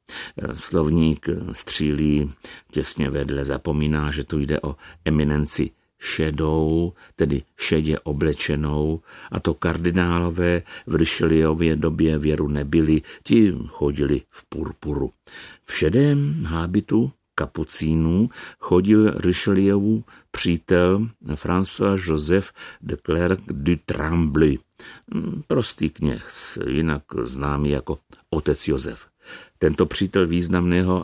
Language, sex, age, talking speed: Czech, male, 60-79, 95 wpm